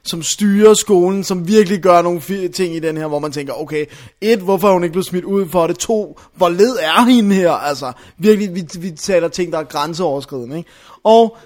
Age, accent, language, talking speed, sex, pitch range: 20-39, native, Danish, 220 wpm, male, 160-200 Hz